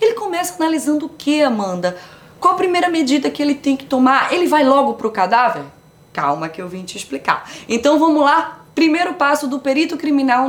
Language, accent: Portuguese, Brazilian